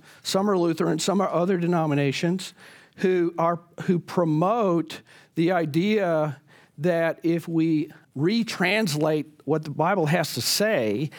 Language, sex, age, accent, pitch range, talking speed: English, male, 50-69, American, 150-190 Hz, 125 wpm